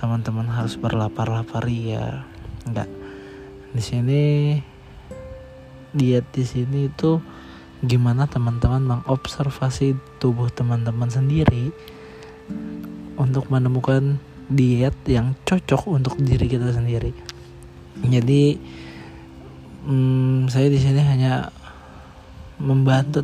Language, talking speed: Indonesian, 85 wpm